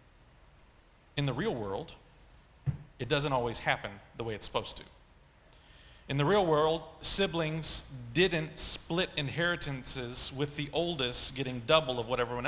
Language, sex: English, male